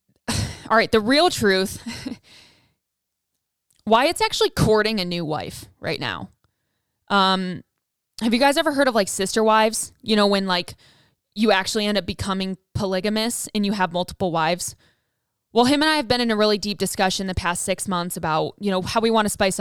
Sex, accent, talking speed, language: female, American, 190 wpm, English